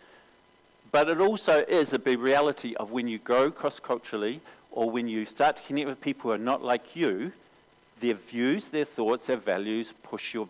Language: English